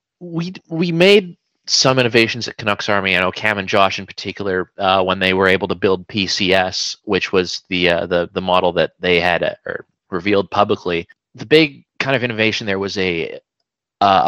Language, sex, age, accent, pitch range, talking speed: English, male, 30-49, American, 90-115 Hz, 195 wpm